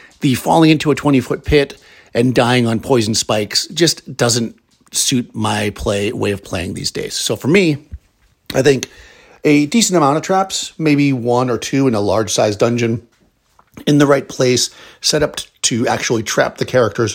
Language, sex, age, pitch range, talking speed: English, male, 50-69, 110-130 Hz, 180 wpm